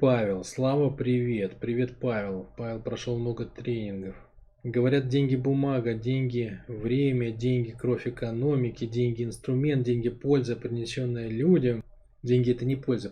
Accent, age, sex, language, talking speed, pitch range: native, 20-39, male, Russian, 125 wpm, 110-130 Hz